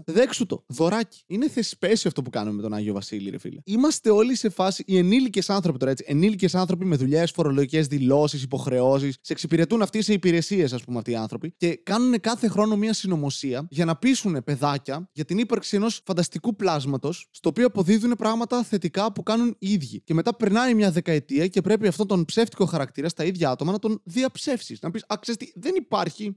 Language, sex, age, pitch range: Greek, male, 20-39, 145-215 Hz